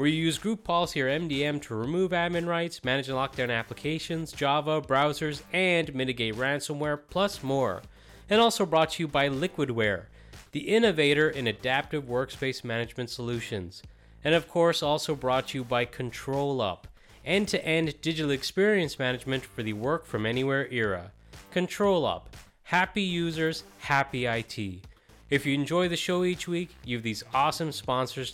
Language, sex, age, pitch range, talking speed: English, male, 30-49, 115-160 Hz, 150 wpm